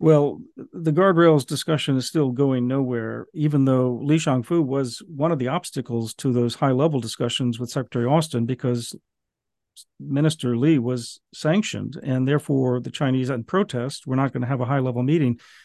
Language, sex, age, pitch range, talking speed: English, male, 50-69, 130-150 Hz, 165 wpm